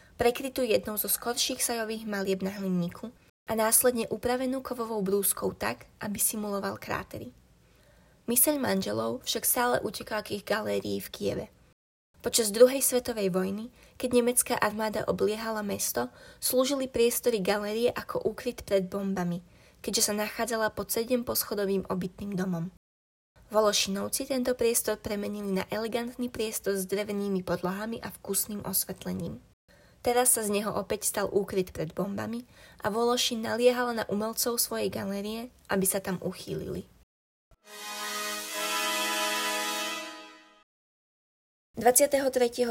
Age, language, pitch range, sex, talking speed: 20-39, Slovak, 195-240 Hz, female, 120 wpm